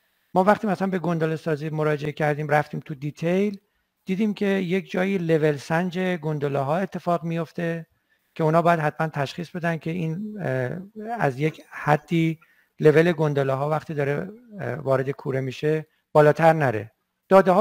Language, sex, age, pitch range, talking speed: Persian, male, 60-79, 150-190 Hz, 150 wpm